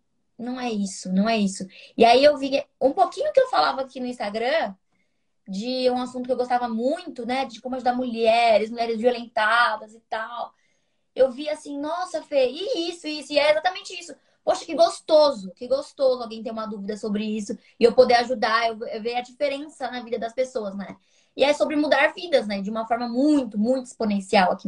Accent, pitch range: Brazilian, 220-270 Hz